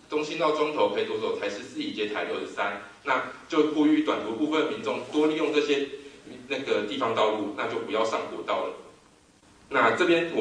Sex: male